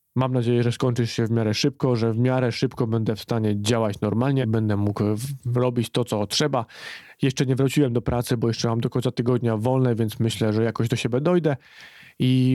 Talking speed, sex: 210 wpm, male